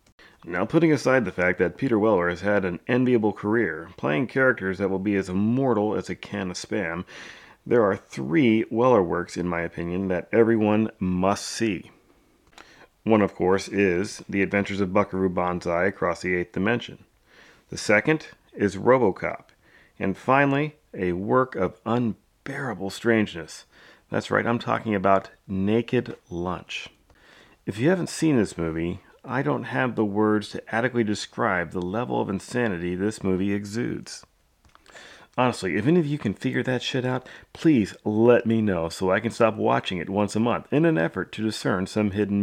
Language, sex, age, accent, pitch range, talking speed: English, male, 40-59, American, 95-120 Hz, 170 wpm